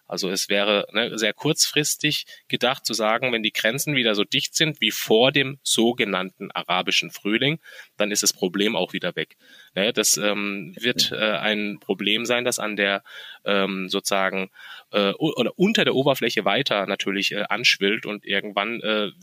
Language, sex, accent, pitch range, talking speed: German, male, German, 100-120 Hz, 160 wpm